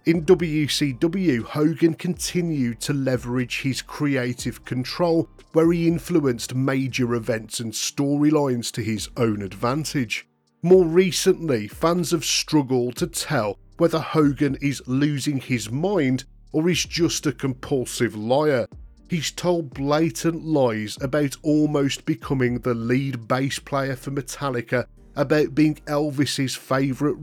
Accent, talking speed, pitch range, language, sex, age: British, 125 wpm, 120-150 Hz, English, male, 40-59